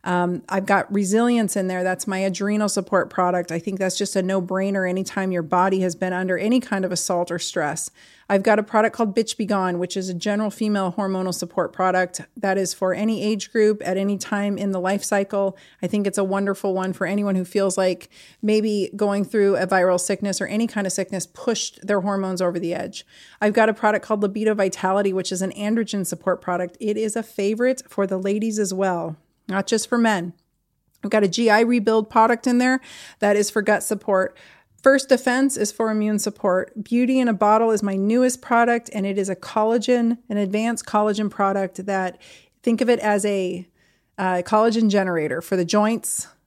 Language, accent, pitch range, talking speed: English, American, 190-220 Hz, 210 wpm